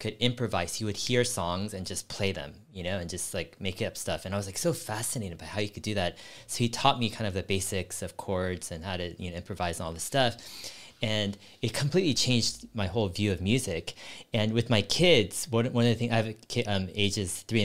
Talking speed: 245 wpm